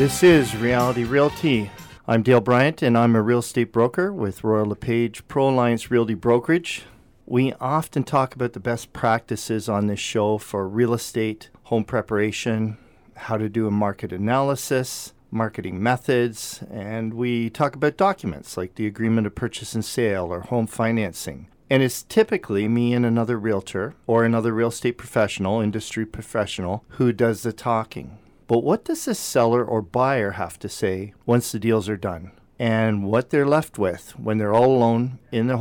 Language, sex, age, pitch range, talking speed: English, male, 40-59, 105-130 Hz, 170 wpm